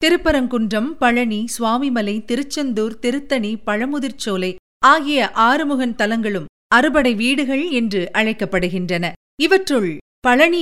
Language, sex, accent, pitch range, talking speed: Tamil, female, native, 200-285 Hz, 85 wpm